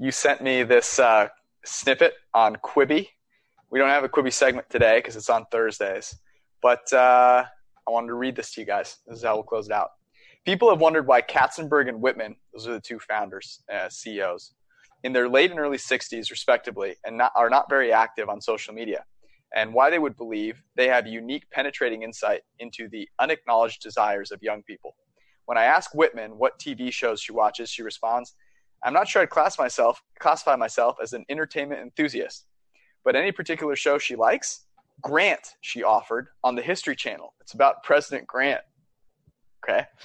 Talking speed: 185 wpm